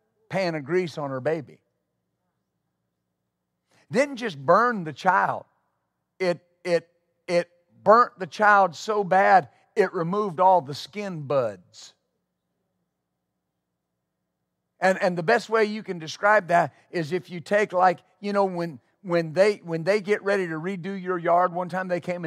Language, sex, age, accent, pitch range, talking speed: English, male, 50-69, American, 145-190 Hz, 150 wpm